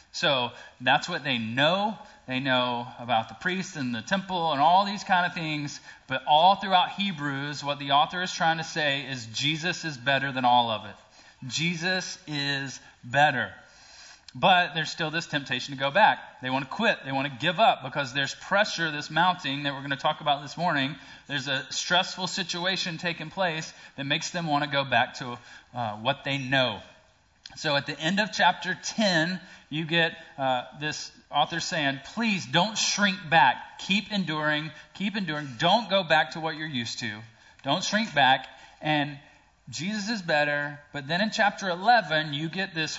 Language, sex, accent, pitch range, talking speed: English, male, American, 140-180 Hz, 185 wpm